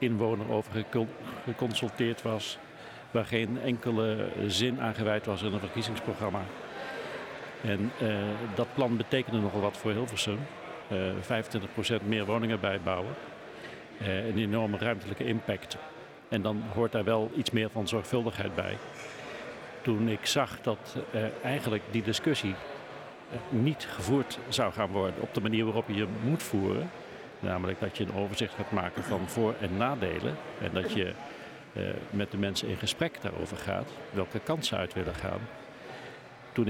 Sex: male